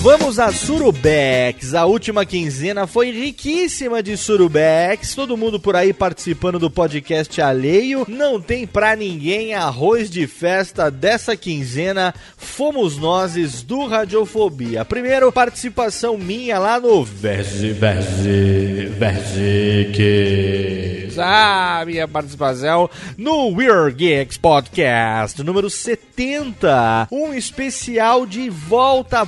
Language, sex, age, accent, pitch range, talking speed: Portuguese, male, 30-49, Brazilian, 155-230 Hz, 105 wpm